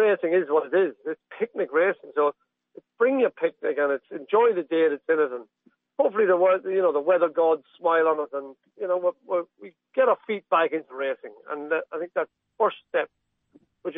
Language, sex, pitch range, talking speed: English, male, 150-240 Hz, 215 wpm